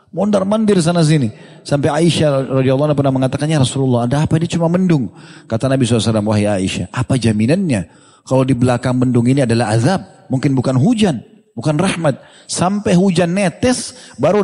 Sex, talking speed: male, 155 wpm